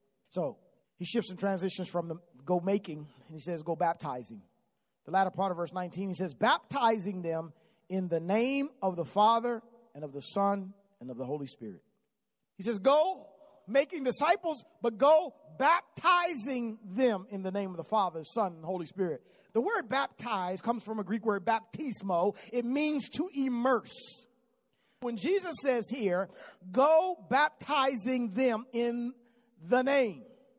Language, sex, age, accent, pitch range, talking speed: English, male, 40-59, American, 190-270 Hz, 160 wpm